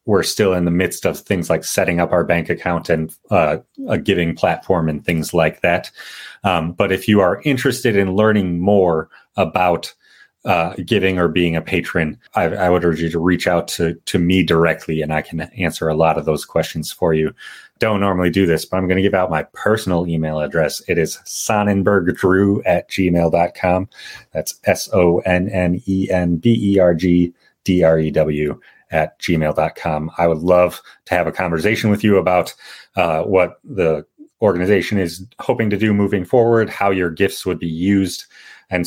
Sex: male